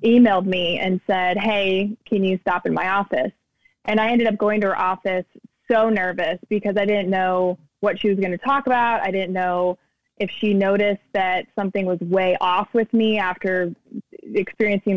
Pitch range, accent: 190-220 Hz, American